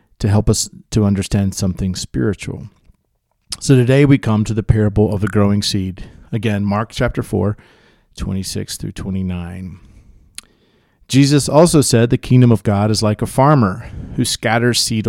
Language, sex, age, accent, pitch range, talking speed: English, male, 40-59, American, 100-125 Hz, 155 wpm